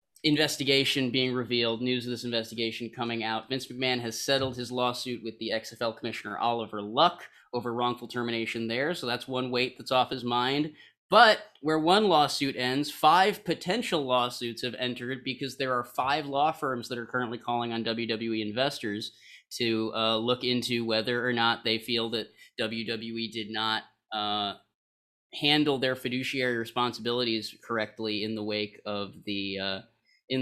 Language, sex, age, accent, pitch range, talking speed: English, male, 20-39, American, 115-135 Hz, 160 wpm